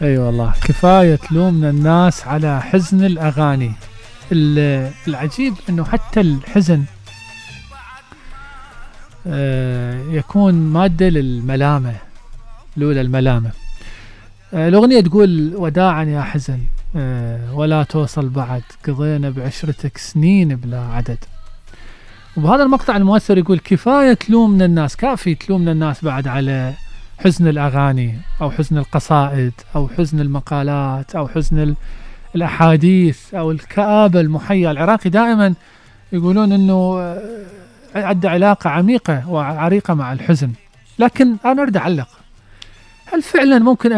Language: Arabic